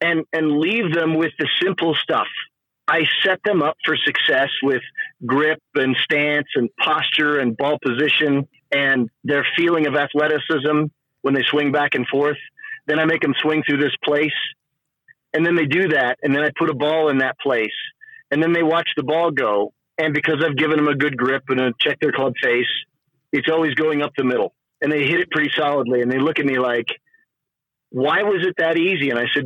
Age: 40-59